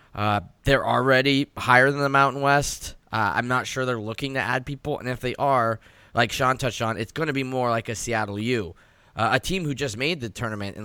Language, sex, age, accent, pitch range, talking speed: English, male, 10-29, American, 105-135 Hz, 240 wpm